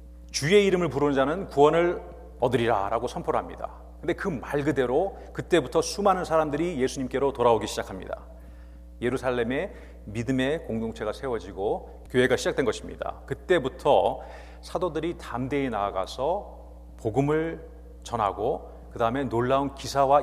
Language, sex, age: Korean, male, 40-59